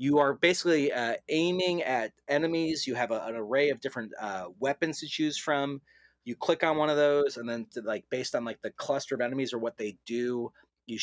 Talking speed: 225 wpm